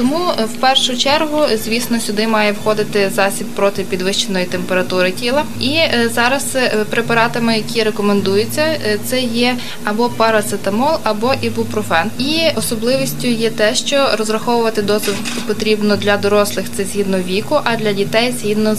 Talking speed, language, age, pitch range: 130 wpm, Ukrainian, 20-39, 210-240 Hz